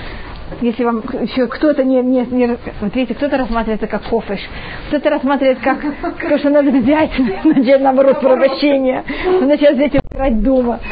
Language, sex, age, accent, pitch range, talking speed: Russian, female, 30-49, native, 240-295 Hz, 150 wpm